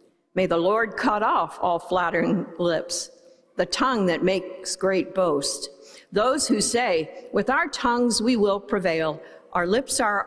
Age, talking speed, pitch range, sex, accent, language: 50-69, 160 wpm, 175-225 Hz, female, American, English